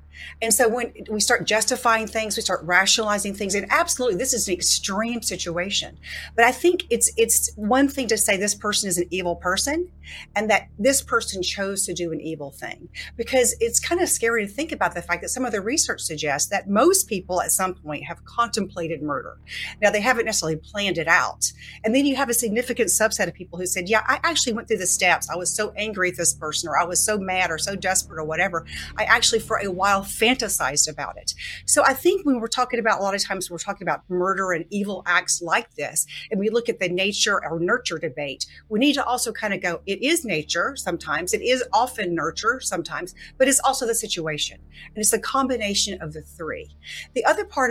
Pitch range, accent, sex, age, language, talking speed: 175-235 Hz, American, female, 40-59, English, 225 wpm